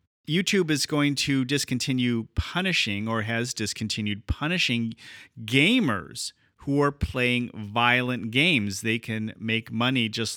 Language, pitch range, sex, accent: English, 115-150 Hz, male, American